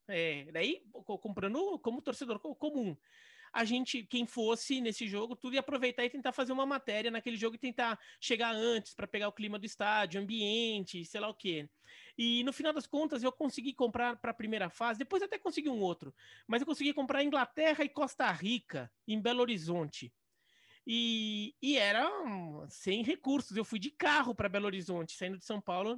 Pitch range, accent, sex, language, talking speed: 220-285 Hz, Brazilian, male, Portuguese, 185 wpm